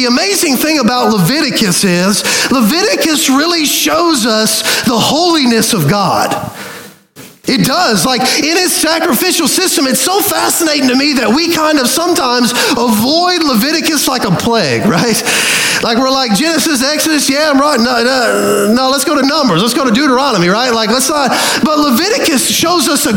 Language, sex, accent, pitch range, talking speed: English, male, American, 235-310 Hz, 170 wpm